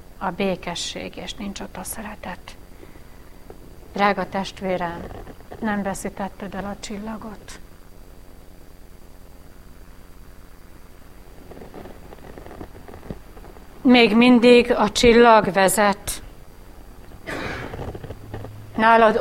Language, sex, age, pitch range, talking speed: Hungarian, female, 60-79, 170-235 Hz, 60 wpm